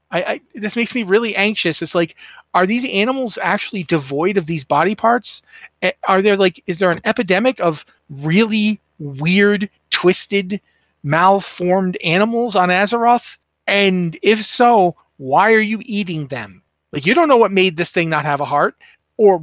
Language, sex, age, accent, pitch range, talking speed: English, male, 40-59, American, 155-210 Hz, 165 wpm